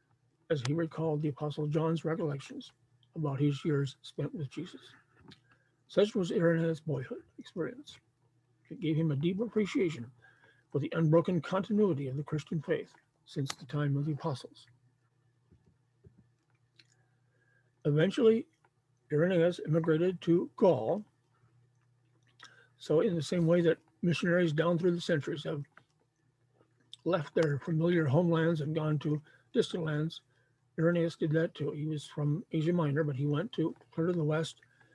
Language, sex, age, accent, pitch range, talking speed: English, male, 50-69, American, 130-165 Hz, 140 wpm